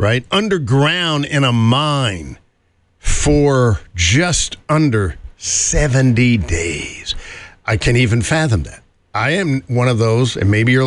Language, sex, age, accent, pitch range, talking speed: English, male, 50-69, American, 100-140 Hz, 125 wpm